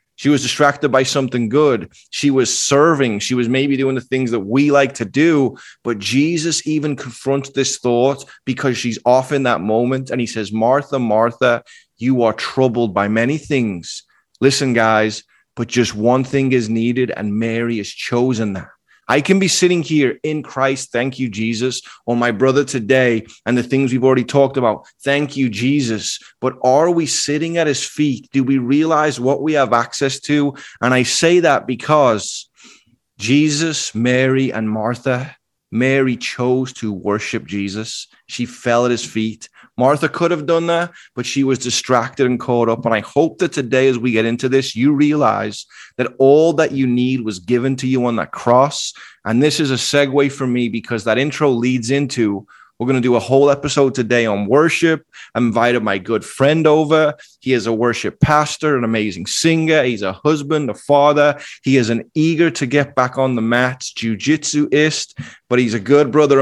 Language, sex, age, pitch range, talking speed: English, male, 30-49, 120-145 Hz, 180 wpm